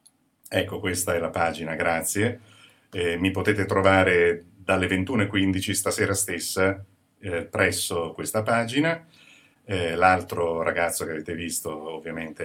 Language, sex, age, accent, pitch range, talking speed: Italian, male, 50-69, native, 85-105 Hz, 120 wpm